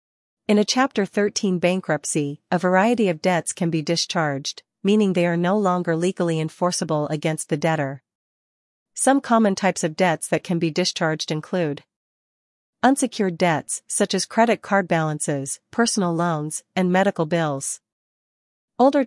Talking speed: 140 wpm